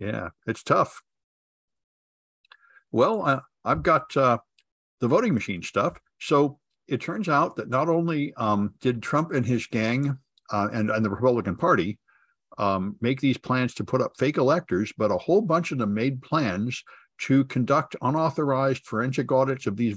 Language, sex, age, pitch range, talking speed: English, male, 60-79, 110-140 Hz, 165 wpm